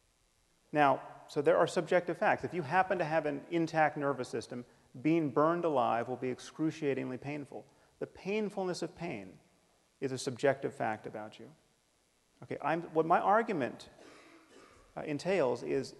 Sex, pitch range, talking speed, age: male, 125-175 Hz, 150 wpm, 30-49